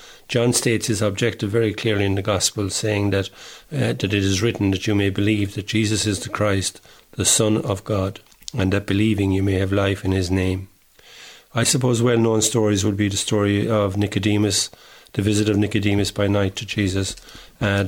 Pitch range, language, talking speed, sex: 100-110 Hz, English, 190 wpm, male